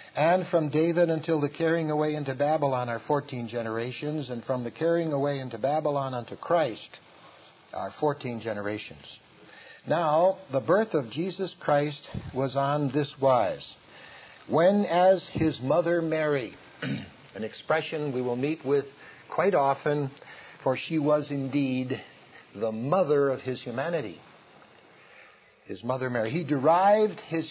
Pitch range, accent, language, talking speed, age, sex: 130-160 Hz, American, English, 135 wpm, 60-79, male